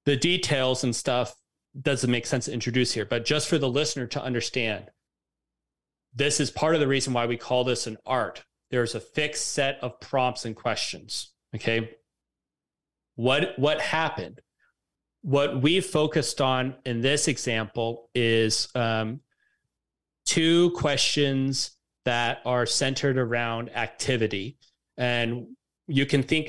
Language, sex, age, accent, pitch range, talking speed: English, male, 30-49, American, 115-140 Hz, 140 wpm